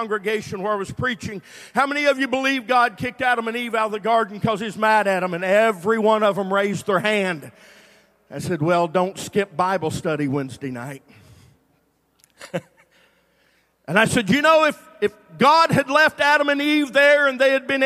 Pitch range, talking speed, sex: 215-270 Hz, 200 wpm, male